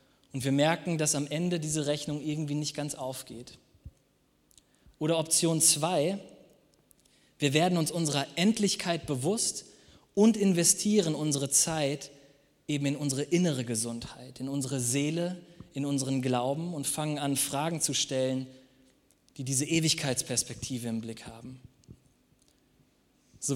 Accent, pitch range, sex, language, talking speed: German, 135-170 Hz, male, German, 125 wpm